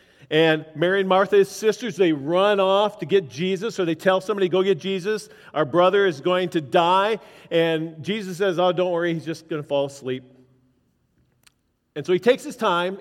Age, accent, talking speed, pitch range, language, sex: 40-59, American, 200 wpm, 160-205 Hz, English, male